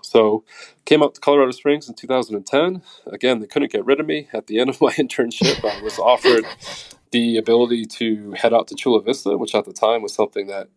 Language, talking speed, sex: English, 215 wpm, male